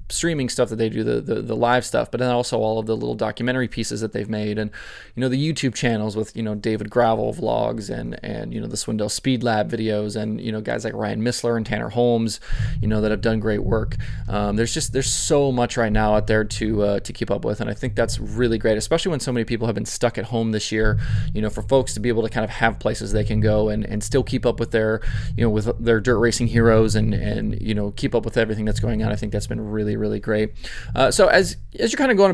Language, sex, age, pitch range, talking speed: English, male, 20-39, 110-125 Hz, 275 wpm